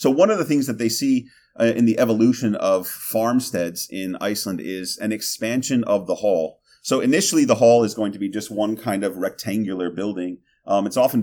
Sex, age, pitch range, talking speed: male, 30-49, 90-115 Hz, 205 wpm